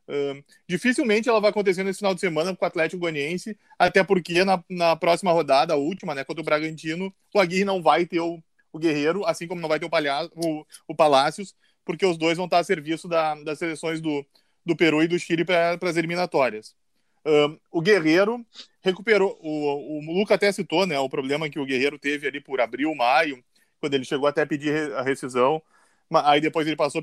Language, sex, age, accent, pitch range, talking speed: Portuguese, male, 20-39, Brazilian, 155-190 Hz, 210 wpm